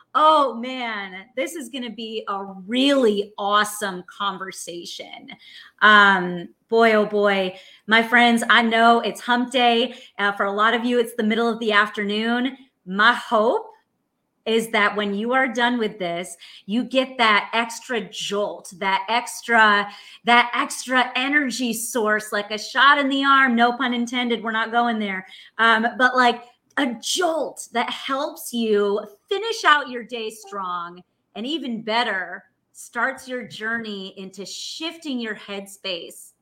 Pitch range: 205-275 Hz